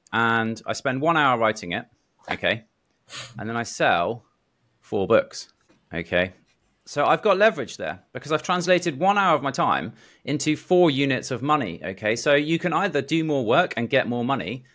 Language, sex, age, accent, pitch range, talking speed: English, male, 30-49, British, 115-155 Hz, 185 wpm